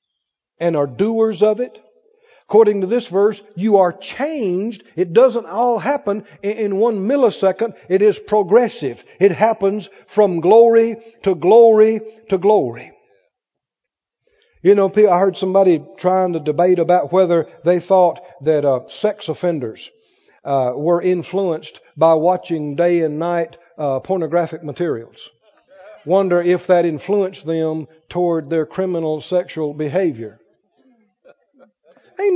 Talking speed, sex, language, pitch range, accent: 125 wpm, male, English, 180-245 Hz, American